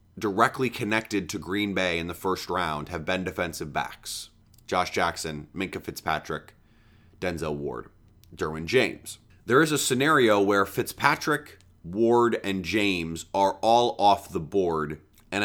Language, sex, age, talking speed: English, male, 30-49, 140 wpm